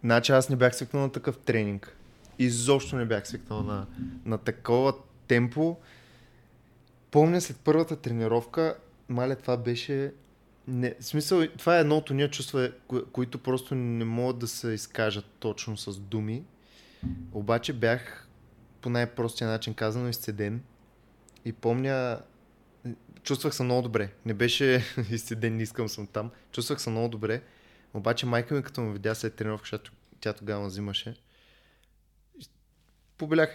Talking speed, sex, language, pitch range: 145 wpm, male, Bulgarian, 115-140 Hz